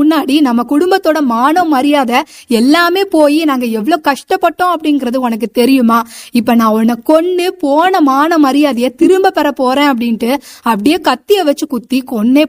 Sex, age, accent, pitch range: female, 20-39, native, 245-310 Hz